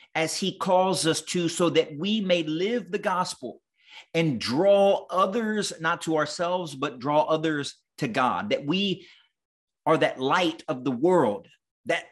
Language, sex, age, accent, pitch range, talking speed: English, male, 30-49, American, 155-200 Hz, 160 wpm